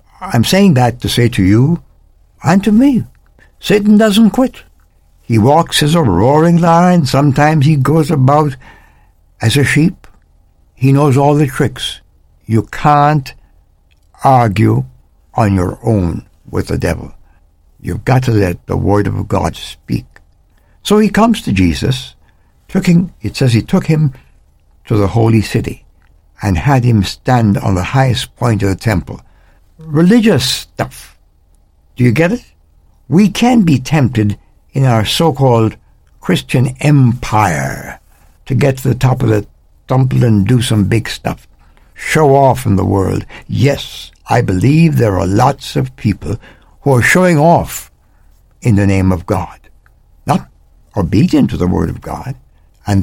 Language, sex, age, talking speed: English, male, 60-79, 150 wpm